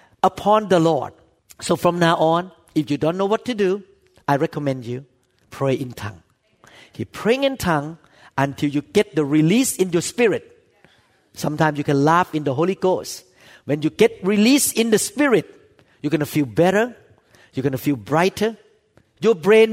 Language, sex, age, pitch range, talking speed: English, male, 50-69, 145-195 Hz, 180 wpm